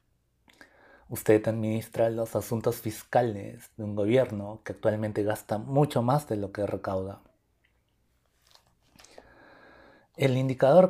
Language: Spanish